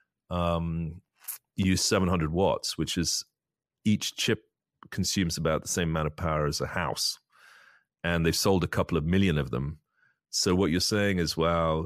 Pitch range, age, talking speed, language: 75-90 Hz, 30-49, 165 wpm, English